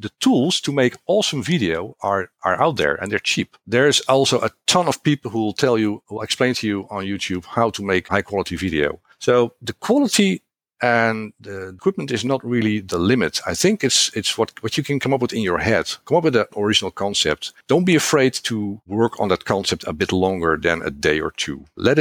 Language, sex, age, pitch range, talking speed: English, male, 50-69, 90-120 Hz, 230 wpm